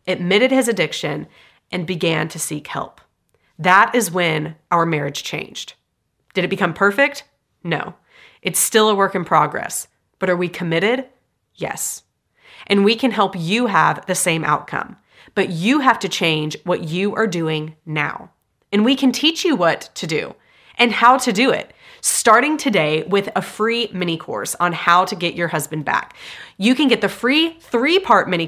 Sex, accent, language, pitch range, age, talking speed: female, American, English, 175-240 Hz, 30-49, 175 wpm